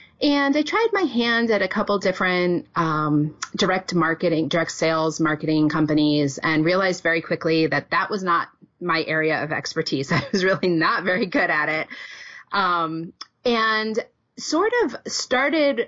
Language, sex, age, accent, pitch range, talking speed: English, female, 30-49, American, 160-220 Hz, 155 wpm